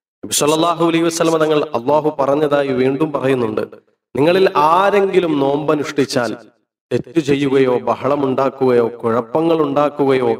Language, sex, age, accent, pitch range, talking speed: Malayalam, male, 30-49, native, 120-150 Hz, 80 wpm